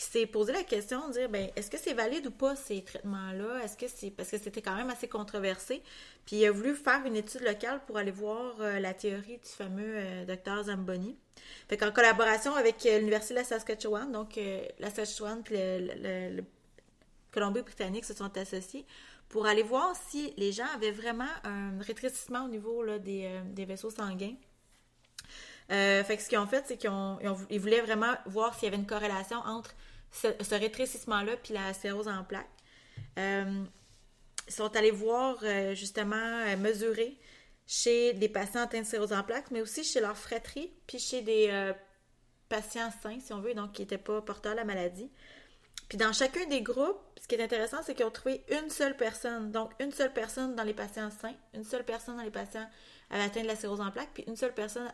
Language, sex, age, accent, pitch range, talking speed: English, female, 30-49, Canadian, 200-240 Hz, 210 wpm